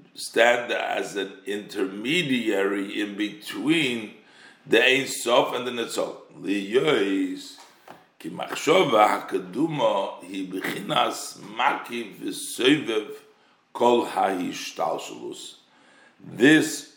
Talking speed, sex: 40 wpm, male